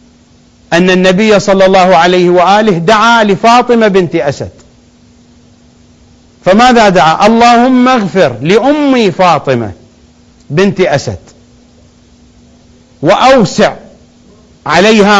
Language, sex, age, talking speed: English, male, 40-59, 80 wpm